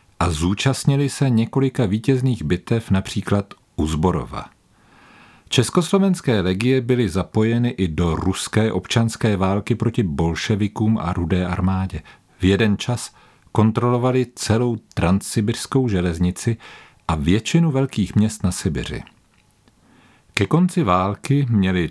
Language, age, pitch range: Czech, 40-59, 95-120 Hz